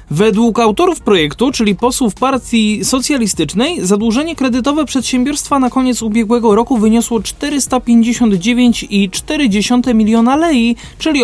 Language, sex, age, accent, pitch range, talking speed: Polish, male, 20-39, native, 180-250 Hz, 100 wpm